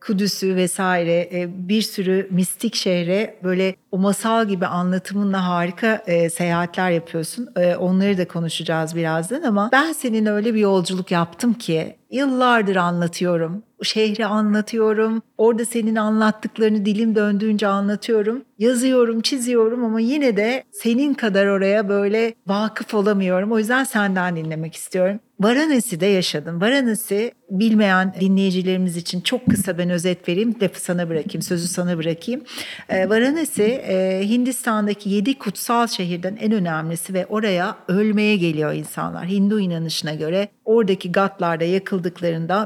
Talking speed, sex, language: 125 wpm, female, Turkish